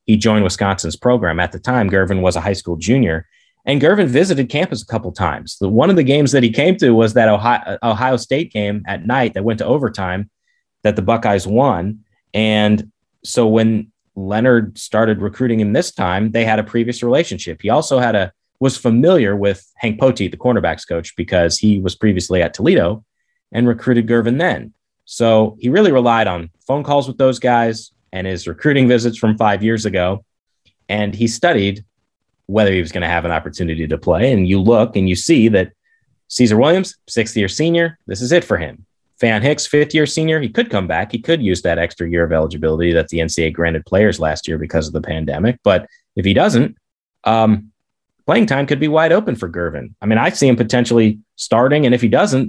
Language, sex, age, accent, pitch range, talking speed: English, male, 30-49, American, 95-125 Hz, 210 wpm